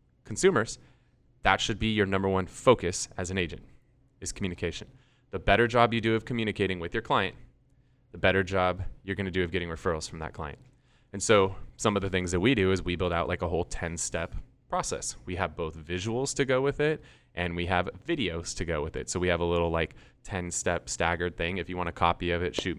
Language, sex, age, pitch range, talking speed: English, male, 20-39, 85-115 Hz, 235 wpm